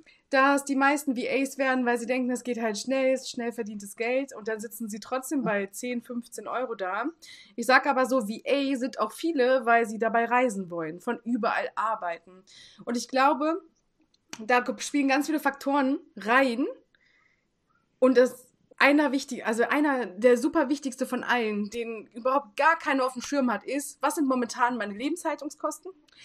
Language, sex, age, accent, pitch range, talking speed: German, female, 20-39, German, 235-280 Hz, 180 wpm